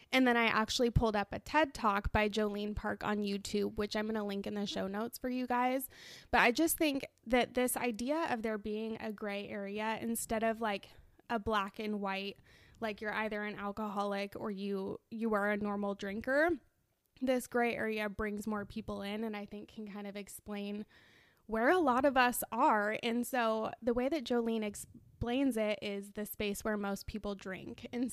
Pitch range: 210-255 Hz